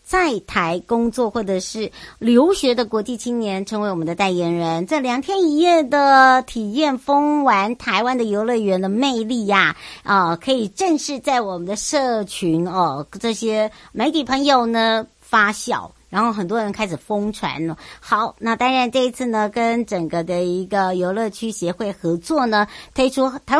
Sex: male